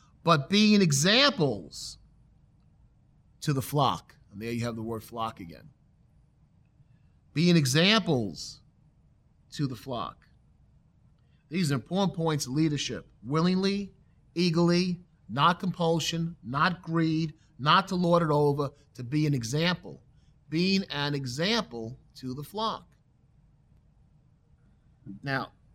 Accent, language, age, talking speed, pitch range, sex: American, English, 40-59, 110 wpm, 130-165 Hz, male